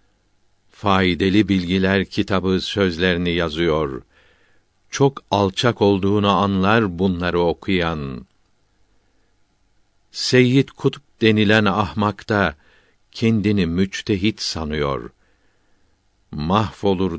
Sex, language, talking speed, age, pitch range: male, Turkish, 65 wpm, 60-79, 90-105 Hz